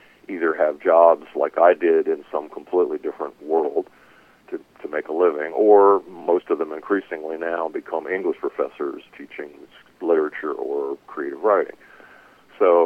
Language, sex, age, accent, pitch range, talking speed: English, male, 50-69, American, 360-435 Hz, 145 wpm